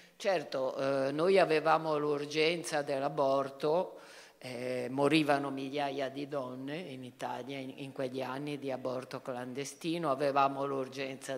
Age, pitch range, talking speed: 50-69, 135-160 Hz, 115 wpm